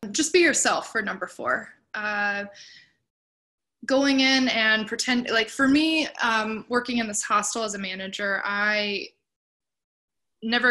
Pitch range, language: 205-240 Hz, English